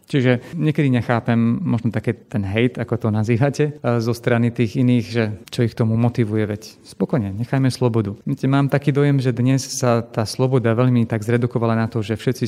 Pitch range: 110-125 Hz